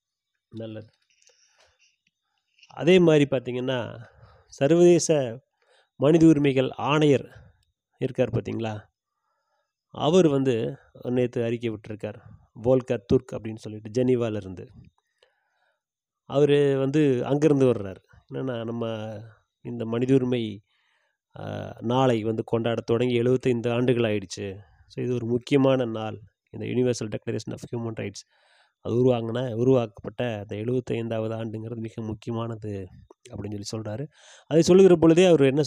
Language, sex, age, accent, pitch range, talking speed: Tamil, male, 30-49, native, 110-130 Hz, 105 wpm